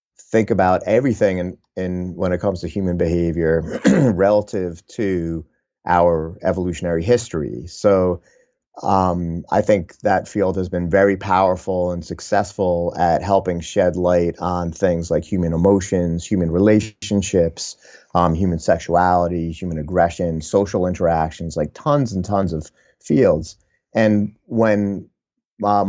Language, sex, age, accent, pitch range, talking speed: English, male, 30-49, American, 85-100 Hz, 125 wpm